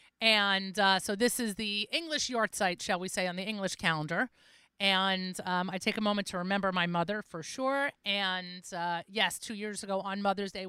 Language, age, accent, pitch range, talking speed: English, 40-59, American, 185-255 Hz, 210 wpm